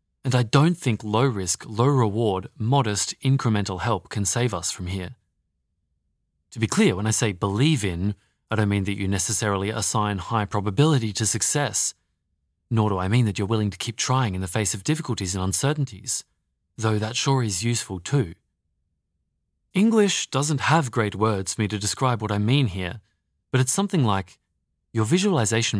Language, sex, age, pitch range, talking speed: English, male, 30-49, 95-130 Hz, 175 wpm